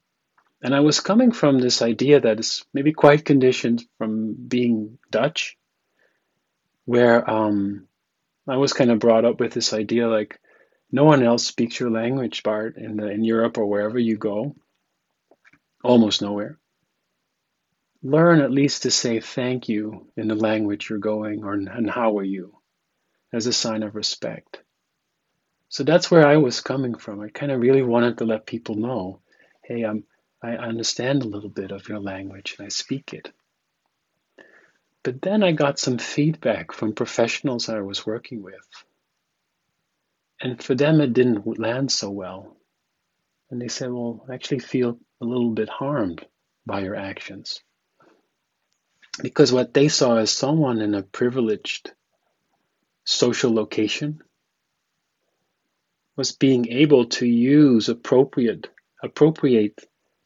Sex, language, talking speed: male, English, 145 wpm